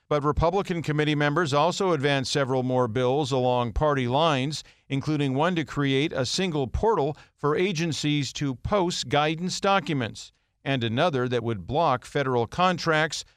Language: English